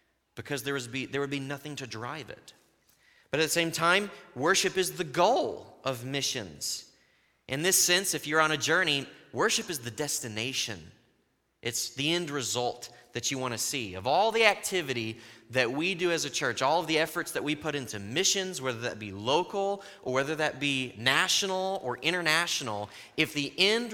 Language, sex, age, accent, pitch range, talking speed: English, male, 30-49, American, 115-160 Hz, 185 wpm